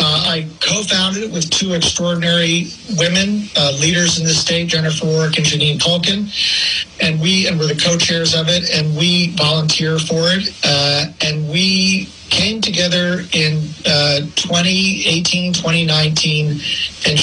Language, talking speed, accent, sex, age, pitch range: English, 145 wpm, American, male, 40-59, 150-170 Hz